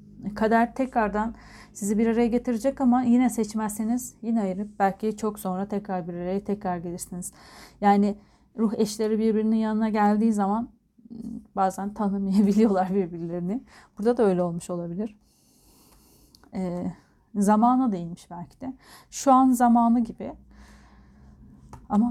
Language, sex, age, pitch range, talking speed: Turkish, female, 30-49, 185-225 Hz, 120 wpm